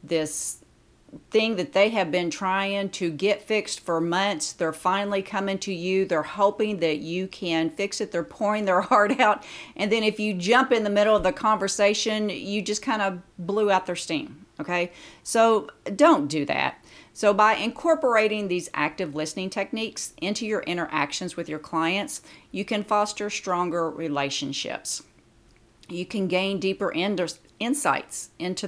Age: 40-59